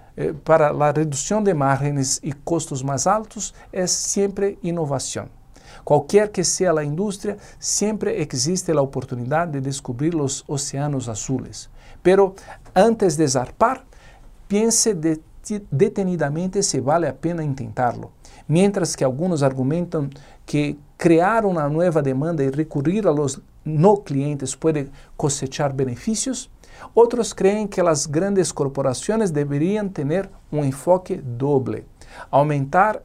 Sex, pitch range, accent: male, 135-185 Hz, Brazilian